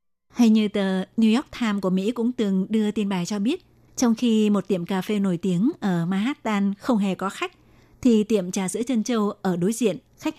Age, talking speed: 20-39, 225 wpm